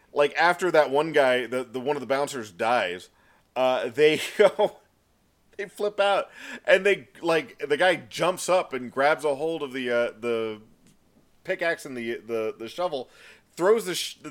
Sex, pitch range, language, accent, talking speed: male, 135-180 Hz, English, American, 175 wpm